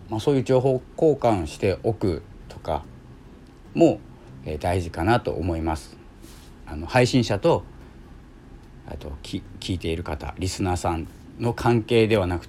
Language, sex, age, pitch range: Japanese, male, 40-59, 80-115 Hz